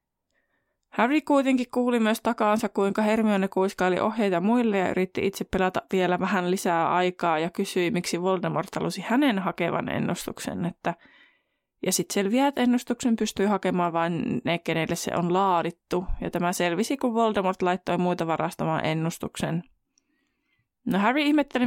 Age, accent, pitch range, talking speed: 20-39, native, 180-225 Hz, 145 wpm